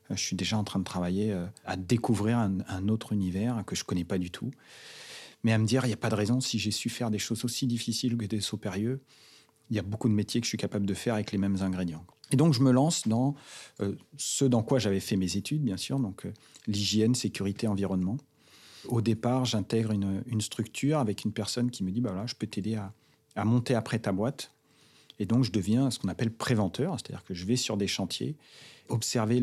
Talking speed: 245 wpm